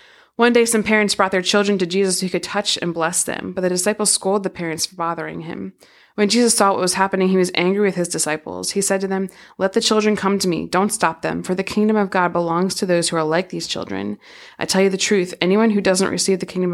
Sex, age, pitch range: female, 20-39, 170-200 Hz